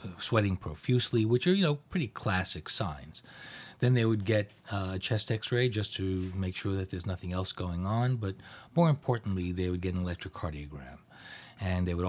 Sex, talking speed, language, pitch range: male, 190 wpm, English, 90-110 Hz